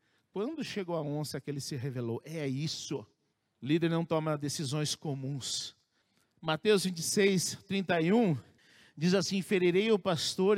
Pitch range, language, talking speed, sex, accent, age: 160-230 Hz, Portuguese, 135 wpm, male, Brazilian, 50-69